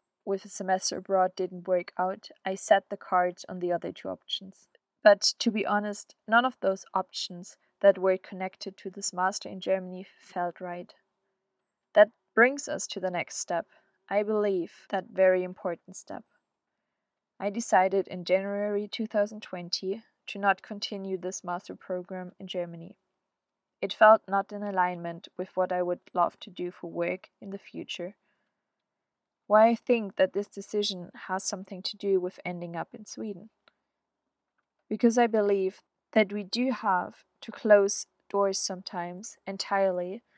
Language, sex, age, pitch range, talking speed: English, female, 20-39, 185-205 Hz, 155 wpm